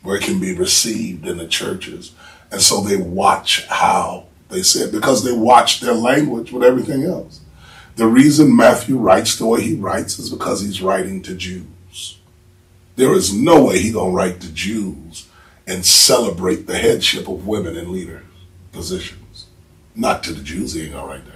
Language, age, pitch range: English, 40-59, 85-110 Hz